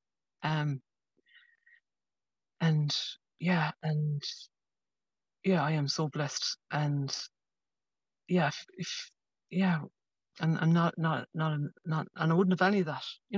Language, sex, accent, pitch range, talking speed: English, female, British, 165-220 Hz, 125 wpm